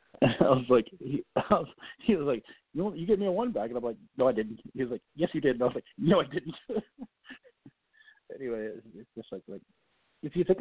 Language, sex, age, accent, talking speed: English, male, 40-59, American, 245 wpm